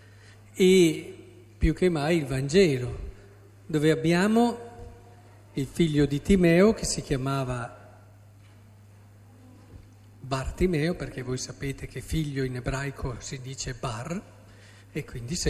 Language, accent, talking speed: Italian, native, 110 wpm